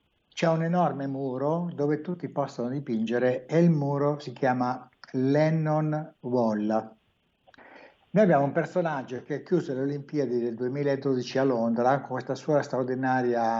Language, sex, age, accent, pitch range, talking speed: Italian, male, 60-79, native, 120-150 Hz, 140 wpm